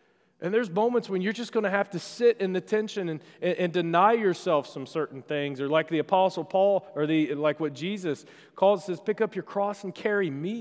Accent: American